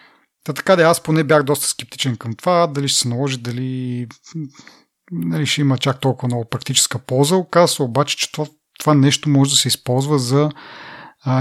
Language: Bulgarian